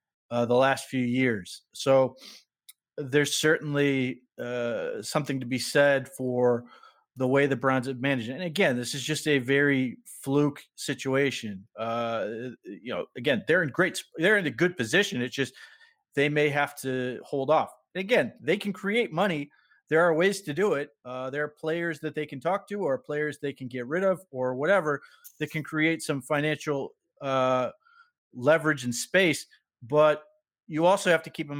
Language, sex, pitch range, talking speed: English, male, 130-155 Hz, 180 wpm